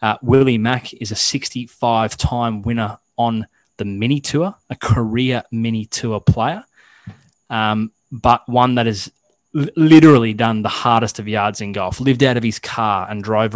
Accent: Australian